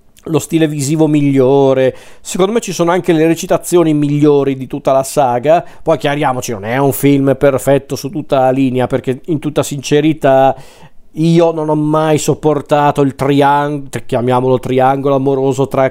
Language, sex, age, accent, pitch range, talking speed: Italian, male, 40-59, native, 135-160 Hz, 160 wpm